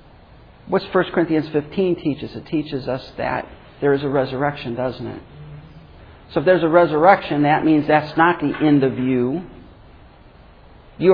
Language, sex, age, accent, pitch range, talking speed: English, male, 60-79, American, 140-185 Hz, 180 wpm